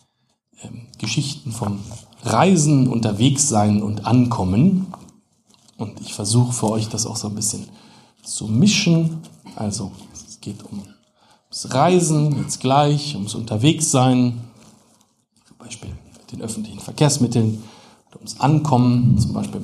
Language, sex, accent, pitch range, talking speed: German, male, German, 115-155 Hz, 125 wpm